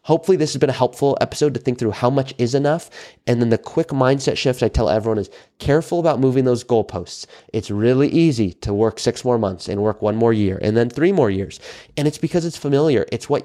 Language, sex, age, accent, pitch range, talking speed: English, male, 30-49, American, 105-135 Hz, 240 wpm